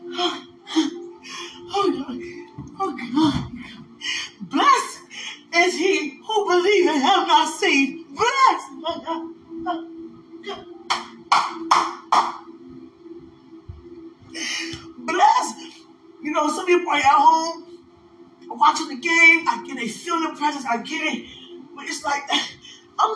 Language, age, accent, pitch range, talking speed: English, 20-39, American, 300-370 Hz, 105 wpm